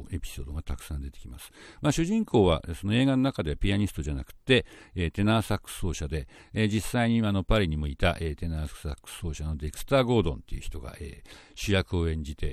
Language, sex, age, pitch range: Japanese, male, 60-79, 75-110 Hz